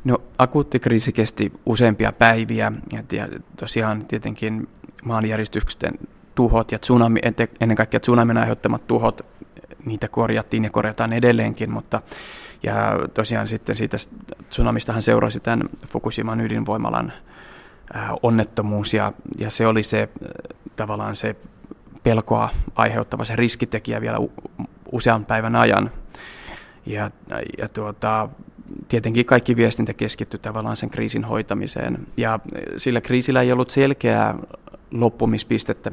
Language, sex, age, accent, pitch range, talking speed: Finnish, male, 30-49, native, 110-120 Hz, 110 wpm